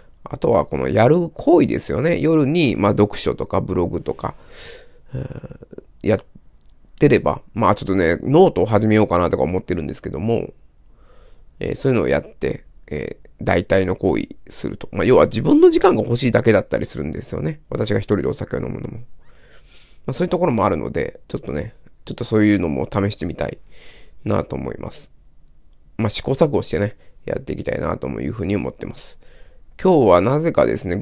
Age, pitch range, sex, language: 20-39, 95-150 Hz, male, Japanese